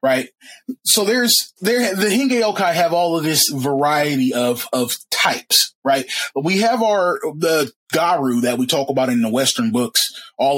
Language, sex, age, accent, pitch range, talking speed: English, male, 30-49, American, 140-225 Hz, 165 wpm